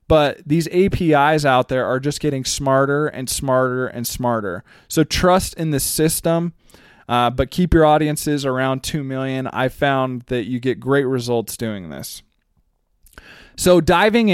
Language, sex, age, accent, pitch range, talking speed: English, male, 20-39, American, 130-155 Hz, 155 wpm